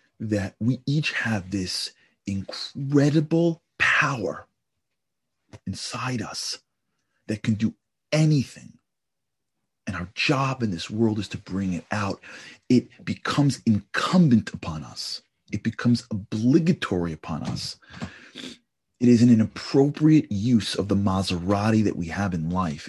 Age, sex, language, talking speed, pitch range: 40-59, male, English, 125 wpm, 95-130 Hz